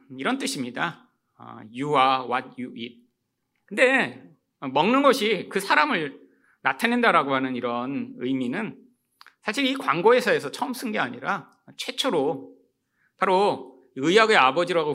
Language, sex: Korean, male